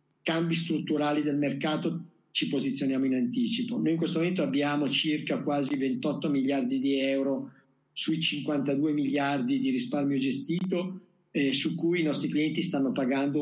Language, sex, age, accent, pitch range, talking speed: Italian, male, 50-69, native, 140-185 Hz, 150 wpm